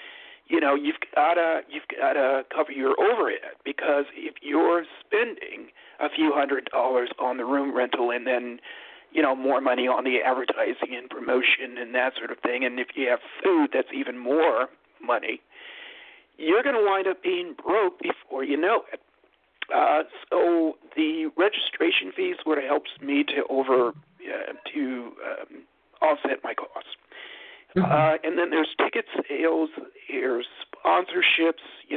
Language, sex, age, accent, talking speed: English, male, 50-69, American, 155 wpm